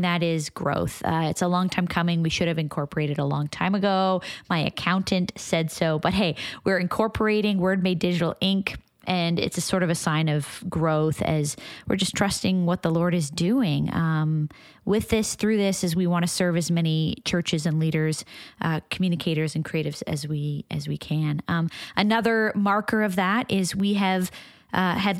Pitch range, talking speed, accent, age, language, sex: 170-210 Hz, 195 wpm, American, 20-39, English, female